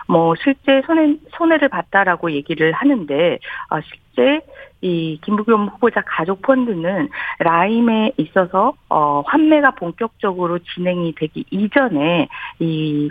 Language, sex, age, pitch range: Korean, female, 50-69, 165-270 Hz